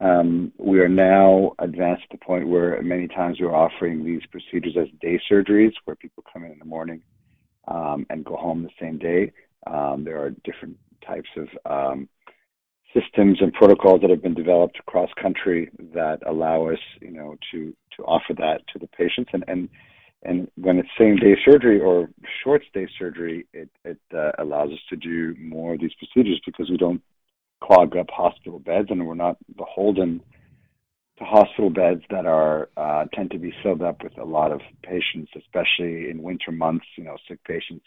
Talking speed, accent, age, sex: 190 wpm, American, 50-69, male